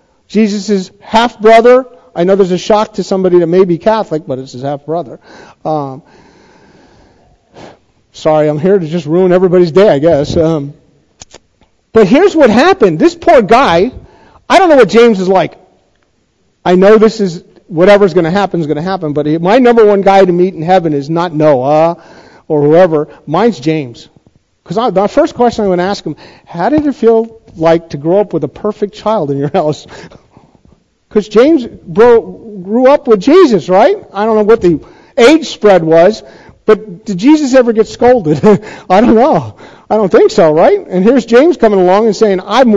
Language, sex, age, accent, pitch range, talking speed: English, male, 50-69, American, 160-220 Hz, 185 wpm